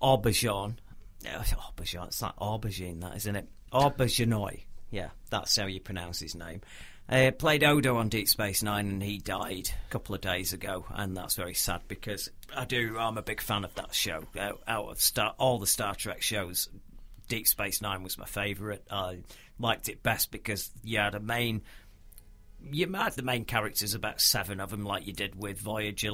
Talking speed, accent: 190 wpm, British